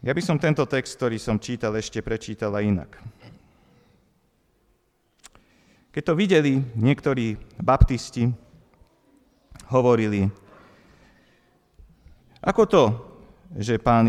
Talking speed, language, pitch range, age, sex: 90 wpm, Slovak, 100-130 Hz, 40-59, male